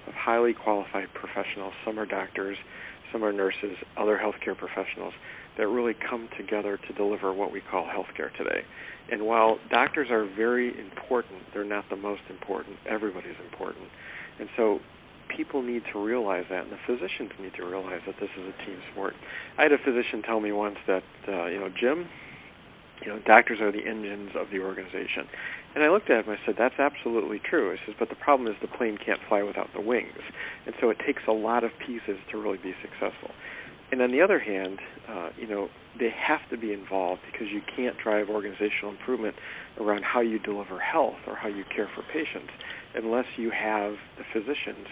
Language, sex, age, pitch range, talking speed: English, male, 40-59, 100-115 Hz, 200 wpm